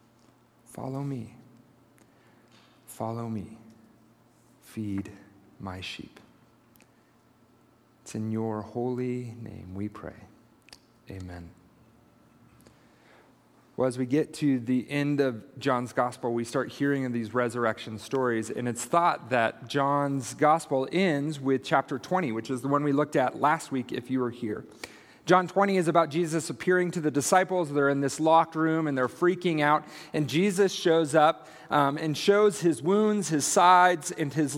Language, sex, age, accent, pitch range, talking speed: English, male, 40-59, American, 125-185 Hz, 150 wpm